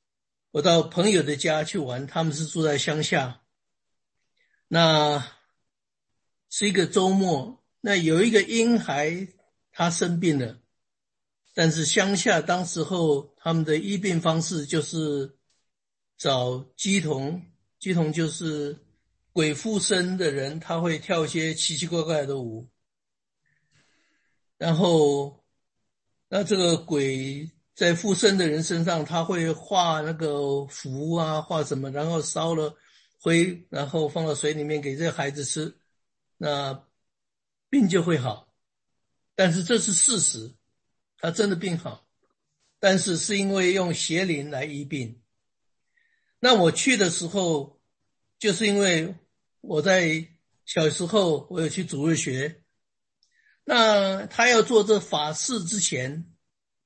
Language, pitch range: English, 145-185 Hz